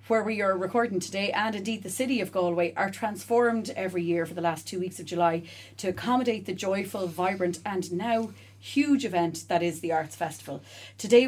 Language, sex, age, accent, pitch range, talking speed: English, female, 30-49, Irish, 170-220 Hz, 195 wpm